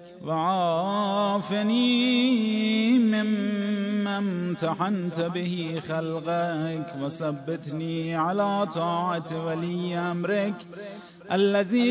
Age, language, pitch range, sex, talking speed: 30-49, Persian, 165-205 Hz, male, 55 wpm